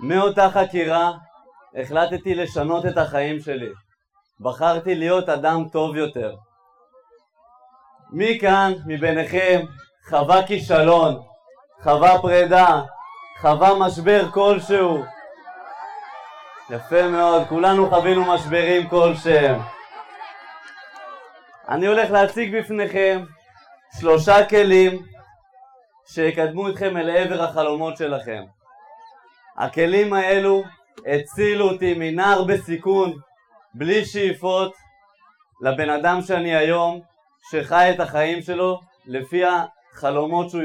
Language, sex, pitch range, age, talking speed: Hebrew, male, 160-205 Hz, 20-39, 85 wpm